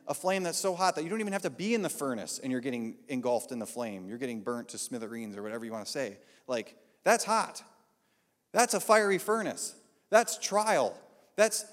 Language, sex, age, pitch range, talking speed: English, male, 30-49, 125-195 Hz, 220 wpm